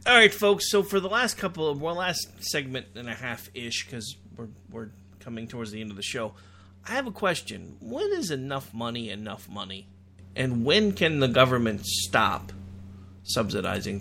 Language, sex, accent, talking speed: English, male, American, 190 wpm